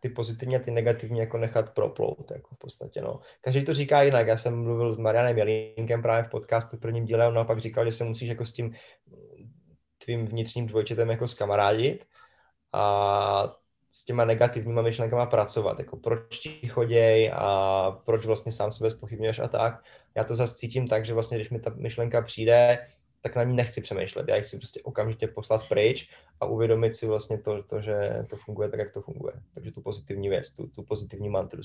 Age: 20-39